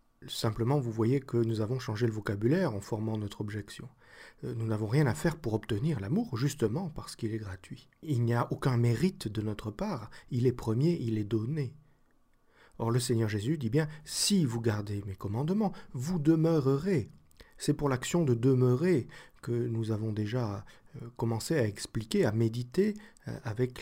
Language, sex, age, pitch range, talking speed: French, male, 40-59, 110-150 Hz, 170 wpm